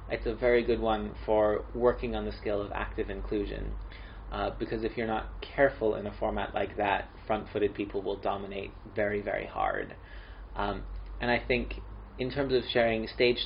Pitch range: 100-115 Hz